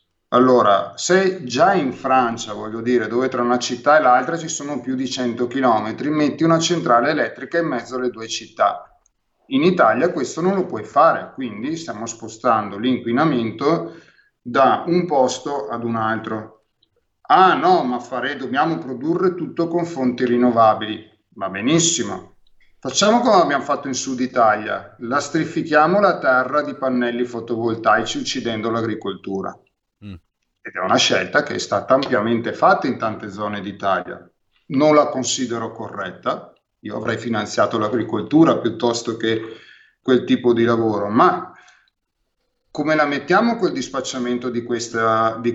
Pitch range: 115-145 Hz